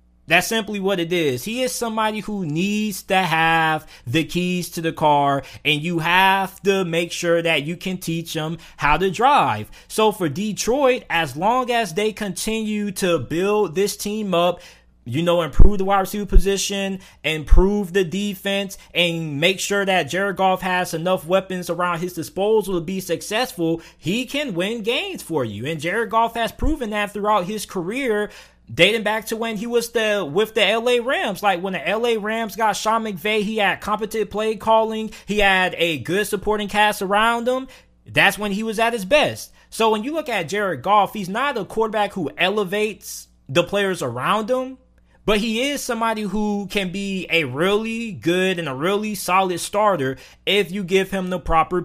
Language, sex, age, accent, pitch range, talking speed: English, male, 20-39, American, 170-215 Hz, 185 wpm